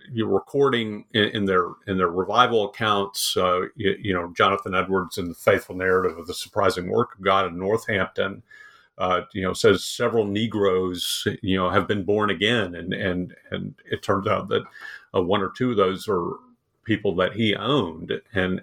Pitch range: 95-120 Hz